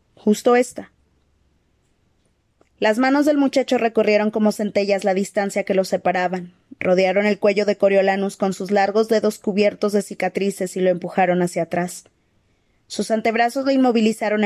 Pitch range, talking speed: 185-215 Hz, 145 wpm